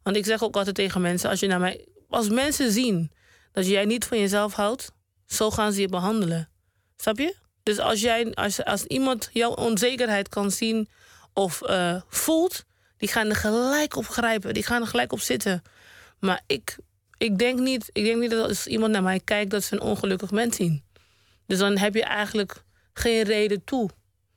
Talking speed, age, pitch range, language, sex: 195 wpm, 30-49, 185-230 Hz, Dutch, female